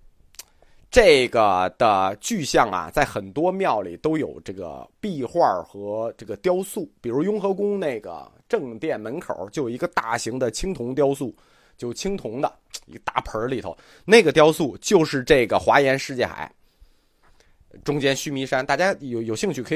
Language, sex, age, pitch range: Chinese, male, 30-49, 110-185 Hz